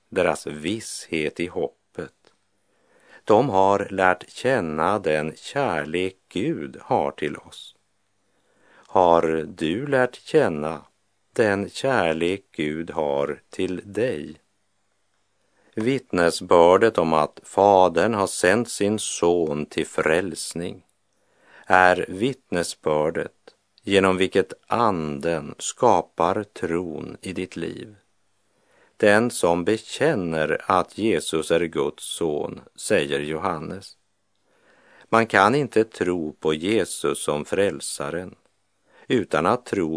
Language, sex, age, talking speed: Swedish, male, 50-69, 100 wpm